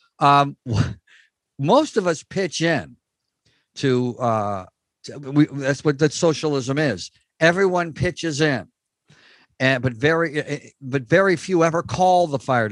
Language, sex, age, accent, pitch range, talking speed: English, male, 50-69, American, 125-165 Hz, 130 wpm